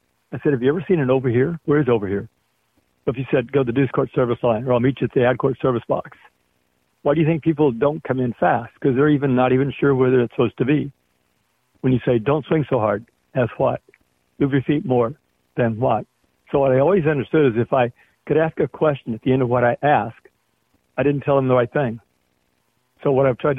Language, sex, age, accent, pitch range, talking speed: English, male, 60-79, American, 115-140 Hz, 250 wpm